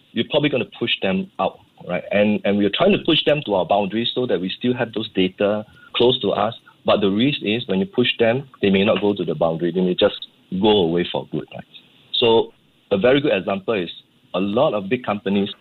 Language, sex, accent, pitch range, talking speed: English, male, Malaysian, 95-125 Hz, 240 wpm